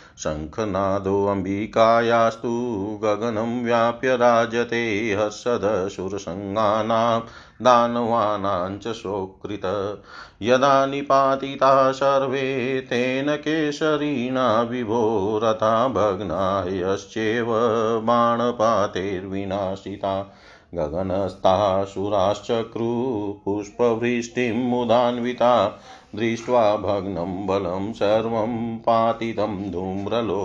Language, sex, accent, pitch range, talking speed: Hindi, male, native, 100-125 Hz, 45 wpm